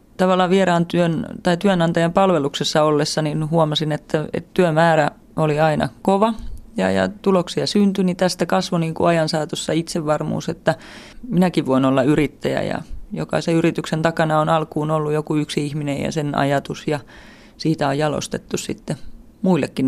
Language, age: Finnish, 30-49